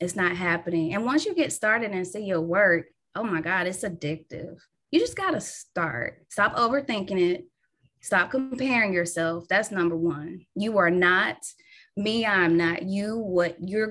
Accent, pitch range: American, 175-225 Hz